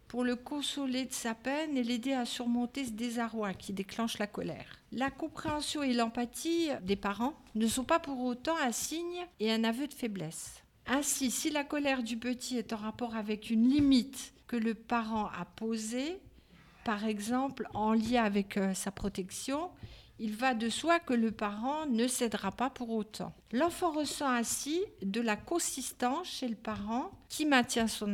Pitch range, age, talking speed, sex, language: 215-270 Hz, 50-69, 175 wpm, female, French